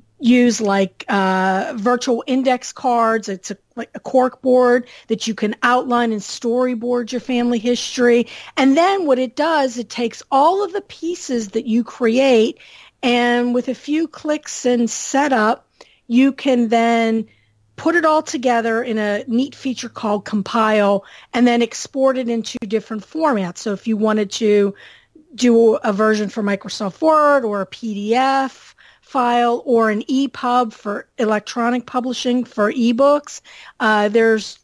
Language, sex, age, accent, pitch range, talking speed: English, female, 40-59, American, 215-260 Hz, 150 wpm